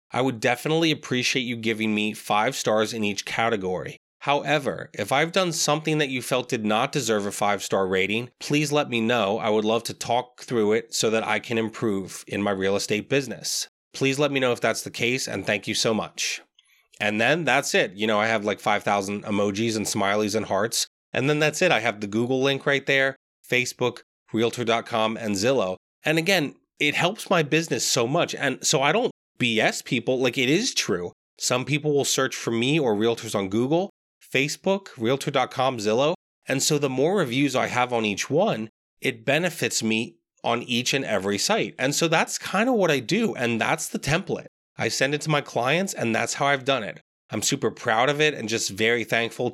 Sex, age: male, 30-49